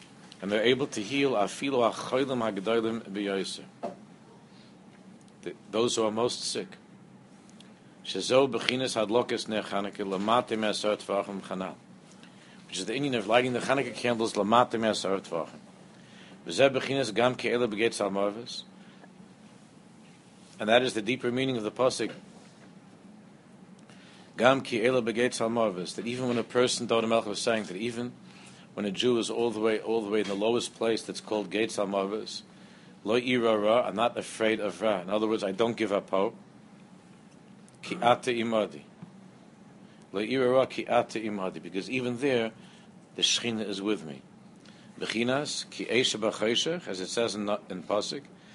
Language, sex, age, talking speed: English, male, 50-69, 115 wpm